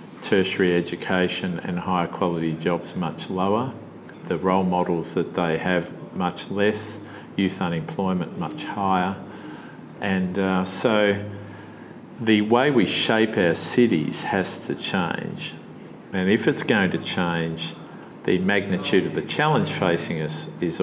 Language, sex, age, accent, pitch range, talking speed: English, male, 50-69, Australian, 85-95 Hz, 135 wpm